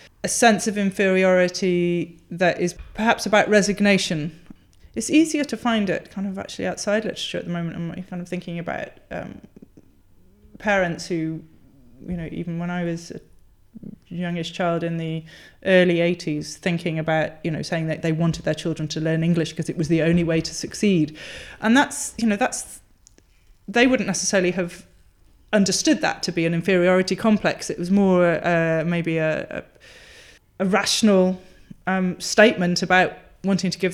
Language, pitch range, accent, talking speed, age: English, 165-205 Hz, British, 170 wpm, 30-49